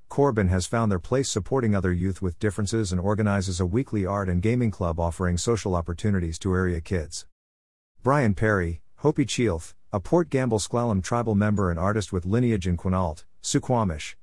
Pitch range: 90-115 Hz